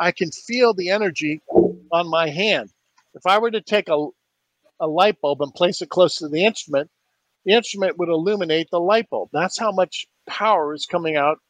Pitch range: 150-205 Hz